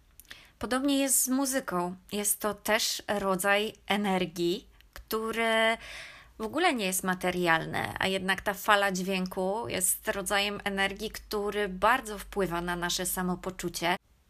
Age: 20-39